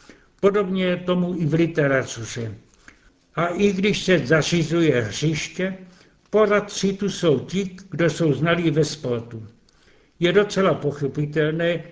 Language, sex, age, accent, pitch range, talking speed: Czech, male, 70-89, native, 150-180 Hz, 115 wpm